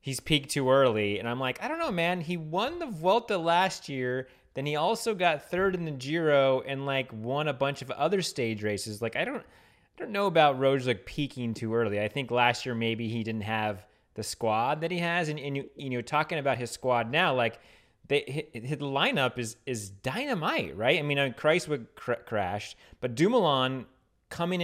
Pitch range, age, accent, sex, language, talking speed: 115-145 Hz, 30-49, American, male, English, 215 wpm